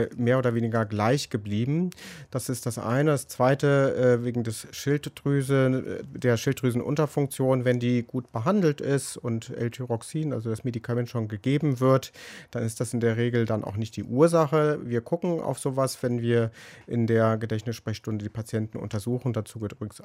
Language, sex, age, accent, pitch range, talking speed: German, male, 40-59, German, 115-140 Hz, 165 wpm